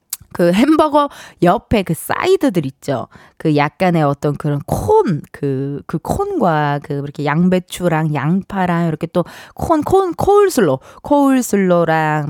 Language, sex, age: Korean, female, 20-39